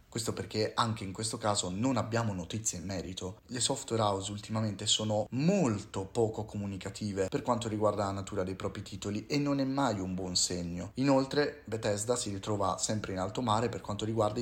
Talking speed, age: 185 wpm, 30-49